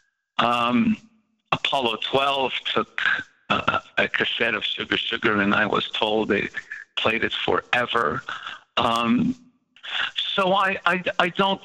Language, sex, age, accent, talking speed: English, male, 60-79, American, 125 wpm